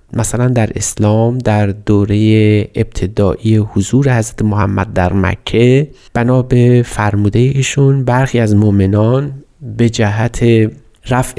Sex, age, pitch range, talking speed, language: male, 30-49, 100-120 Hz, 110 wpm, Persian